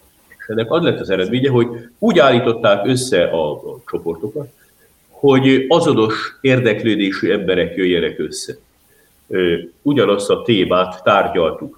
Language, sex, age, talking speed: Hungarian, male, 50-69, 110 wpm